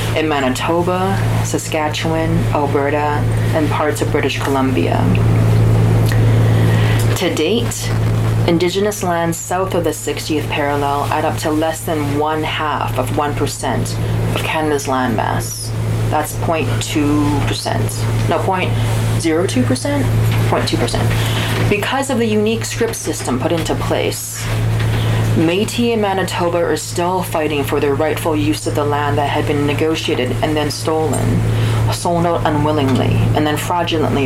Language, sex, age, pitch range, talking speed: English, female, 30-49, 110-150 Hz, 125 wpm